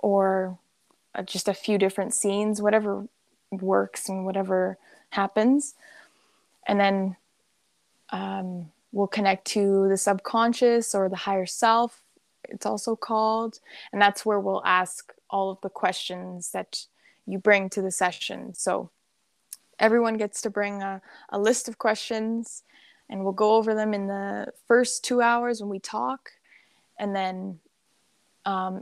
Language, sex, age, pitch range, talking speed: English, female, 20-39, 190-215 Hz, 140 wpm